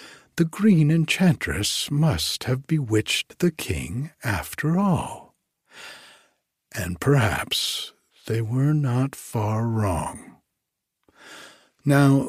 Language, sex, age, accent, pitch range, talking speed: English, male, 60-79, American, 100-140 Hz, 90 wpm